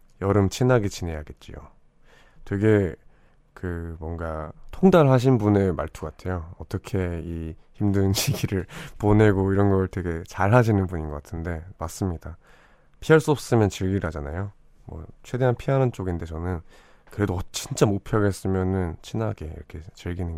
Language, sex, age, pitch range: Korean, male, 20-39, 85-105 Hz